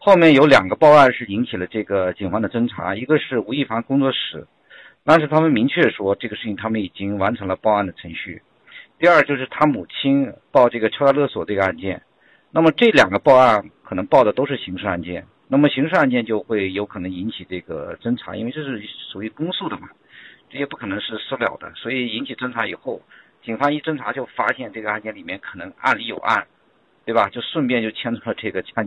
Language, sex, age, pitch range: Chinese, male, 50-69, 105-140 Hz